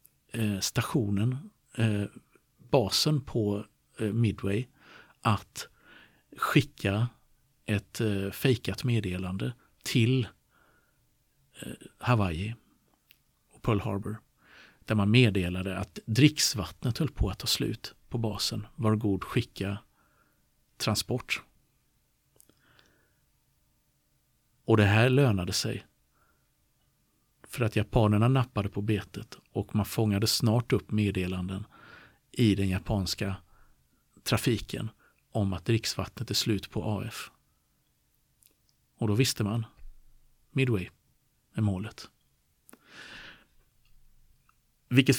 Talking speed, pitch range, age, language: 90 wpm, 100-120 Hz, 50-69, Swedish